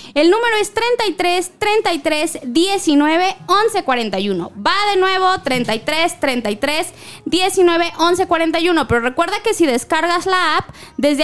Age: 20-39